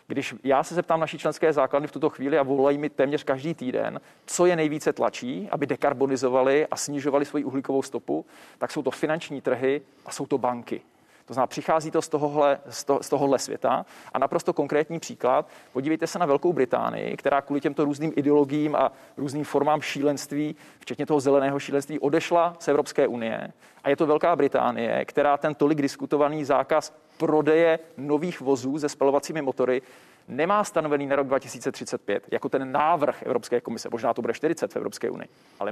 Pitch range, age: 135-155 Hz, 40-59